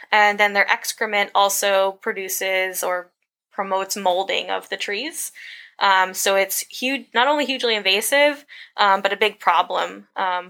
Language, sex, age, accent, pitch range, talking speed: English, female, 10-29, American, 190-235 Hz, 150 wpm